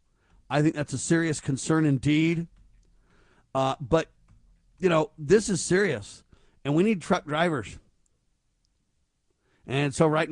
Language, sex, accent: English, male, American